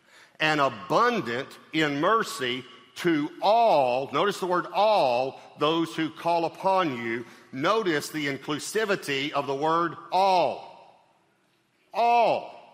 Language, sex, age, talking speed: English, male, 50-69, 110 wpm